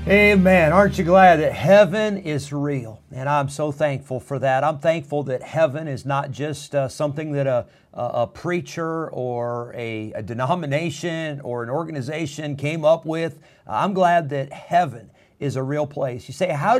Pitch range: 130-160 Hz